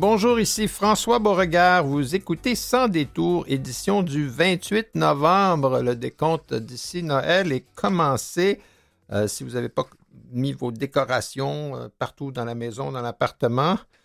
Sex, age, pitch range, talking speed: male, 60-79, 120-170 Hz, 140 wpm